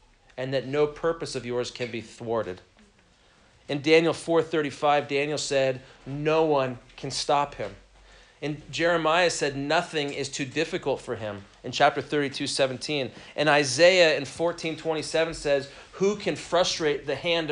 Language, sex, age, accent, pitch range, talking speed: English, male, 40-59, American, 130-160 Hz, 140 wpm